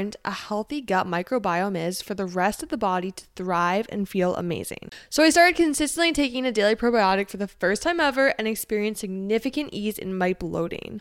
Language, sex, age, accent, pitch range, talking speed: English, female, 10-29, American, 195-240 Hz, 195 wpm